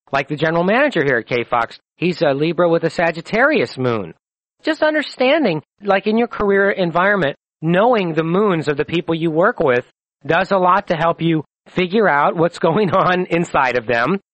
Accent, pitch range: American, 150-190 Hz